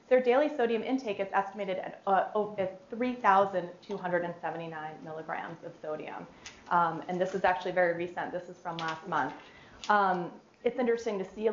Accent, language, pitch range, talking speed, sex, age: American, English, 175-220 Hz, 160 wpm, female, 30-49